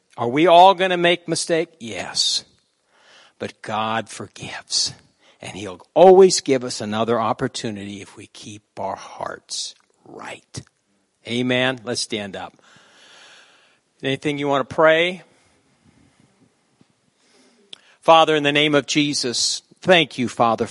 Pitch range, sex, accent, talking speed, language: 115-150 Hz, male, American, 120 wpm, English